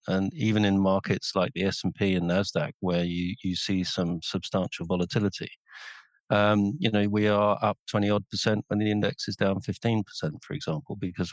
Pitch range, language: 95-110 Hz, English